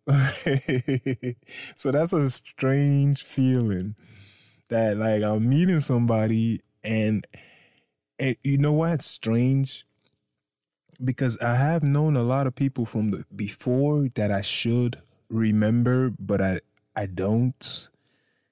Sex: male